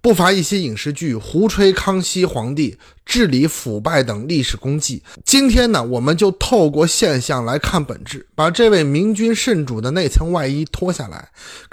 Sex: male